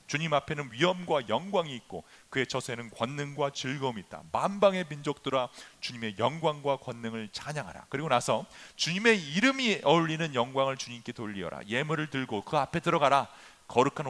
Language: English